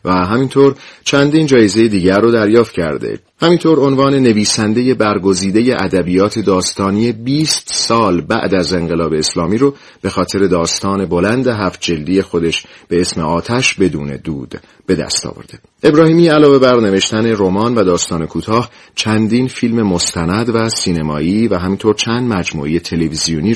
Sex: male